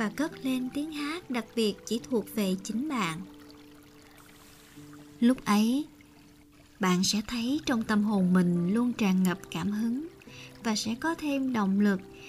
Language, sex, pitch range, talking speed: Vietnamese, male, 190-245 Hz, 155 wpm